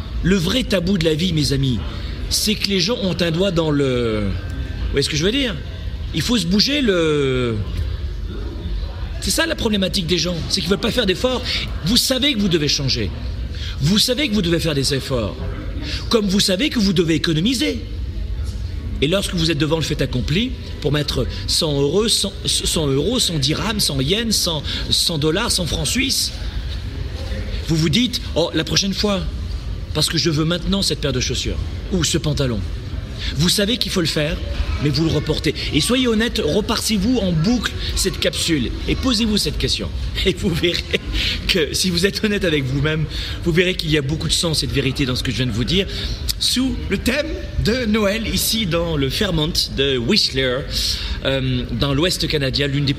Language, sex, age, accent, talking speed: French, male, 40-59, French, 195 wpm